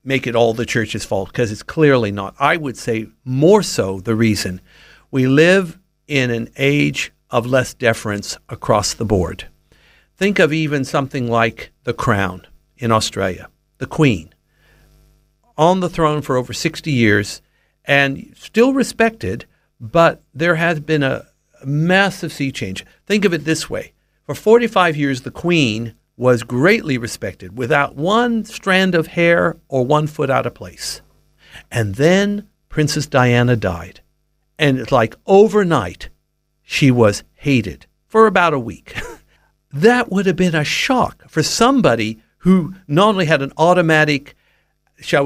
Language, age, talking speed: English, 50-69, 150 wpm